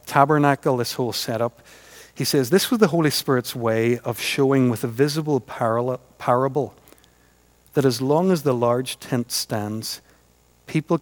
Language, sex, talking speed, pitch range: English, male, 145 wpm, 95-140 Hz